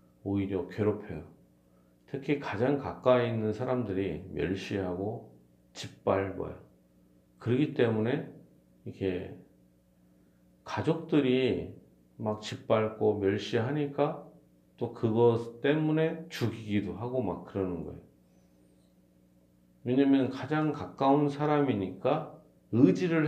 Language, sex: Korean, male